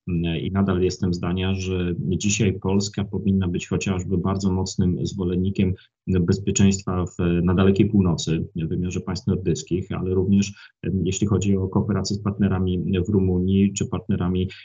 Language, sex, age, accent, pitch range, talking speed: Polish, male, 30-49, native, 95-110 Hz, 140 wpm